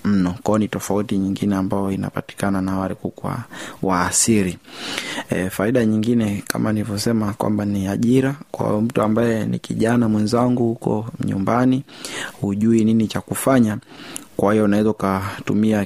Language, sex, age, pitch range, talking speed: Swahili, male, 20-39, 100-115 Hz, 135 wpm